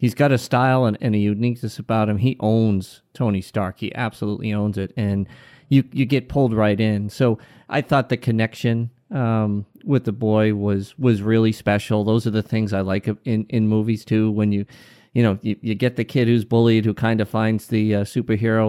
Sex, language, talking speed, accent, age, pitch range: male, English, 215 wpm, American, 40-59, 105-125 Hz